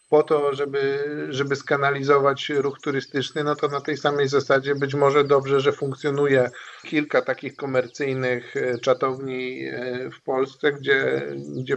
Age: 50-69